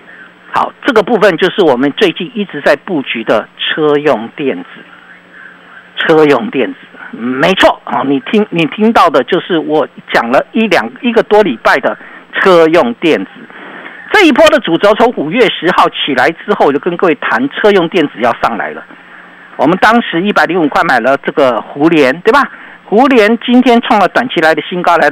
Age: 50-69